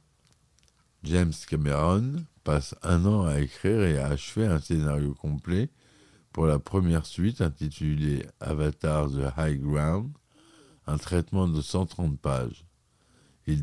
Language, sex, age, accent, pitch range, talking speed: French, male, 50-69, French, 75-90 Hz, 125 wpm